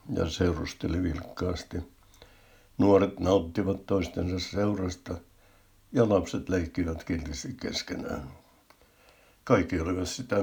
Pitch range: 85-95 Hz